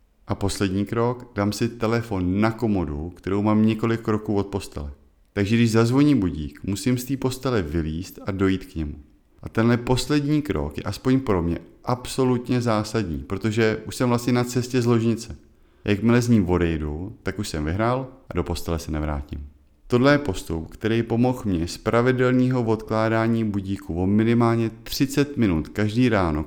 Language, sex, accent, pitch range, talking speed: Czech, male, native, 80-115 Hz, 170 wpm